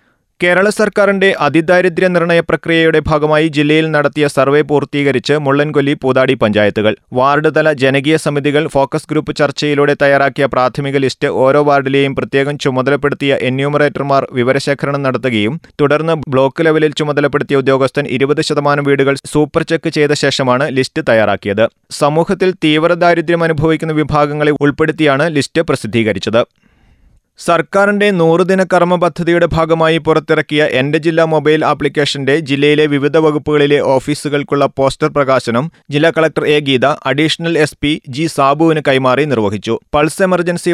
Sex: male